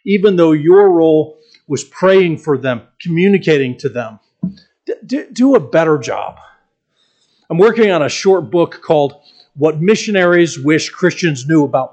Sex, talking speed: male, 145 wpm